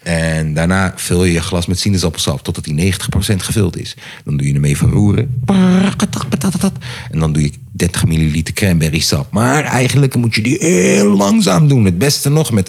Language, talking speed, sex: Dutch, 185 wpm, male